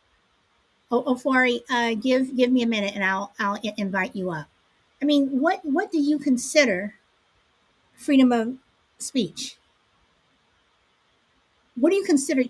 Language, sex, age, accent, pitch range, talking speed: English, female, 50-69, American, 225-270 Hz, 135 wpm